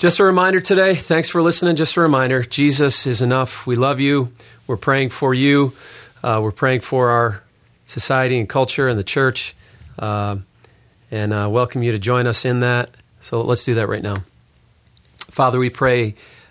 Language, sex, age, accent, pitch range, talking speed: English, male, 40-59, American, 115-130 Hz, 180 wpm